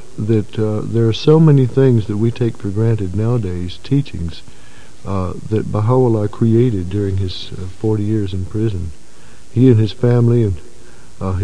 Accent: American